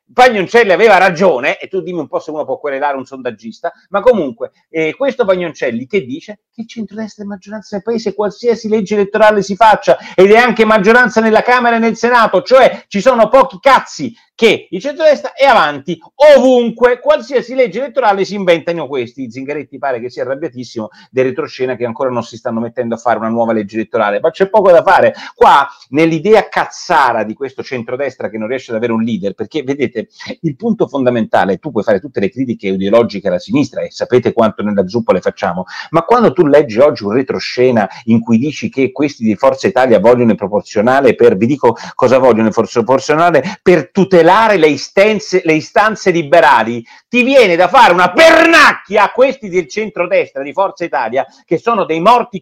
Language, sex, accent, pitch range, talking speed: Italian, male, native, 130-220 Hz, 190 wpm